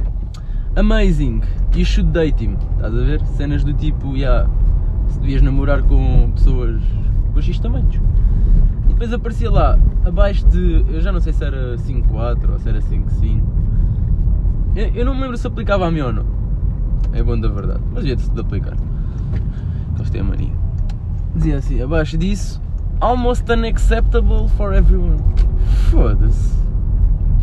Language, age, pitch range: Portuguese, 20-39, 90-110 Hz